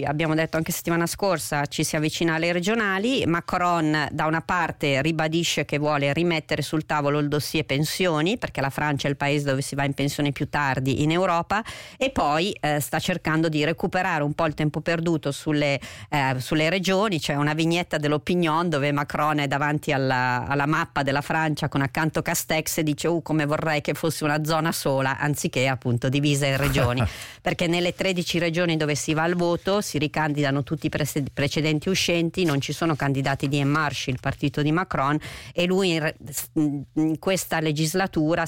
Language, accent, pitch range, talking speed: Italian, native, 140-165 Hz, 185 wpm